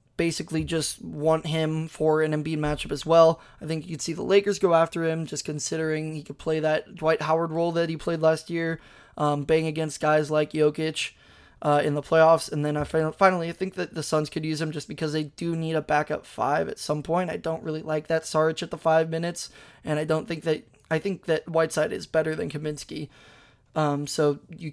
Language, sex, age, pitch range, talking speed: English, male, 20-39, 155-165 Hz, 225 wpm